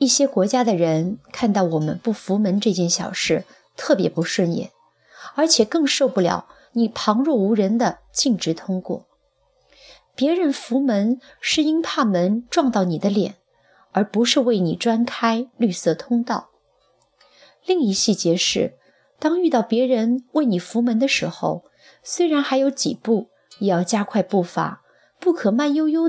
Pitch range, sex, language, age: 185-265 Hz, female, Chinese, 30-49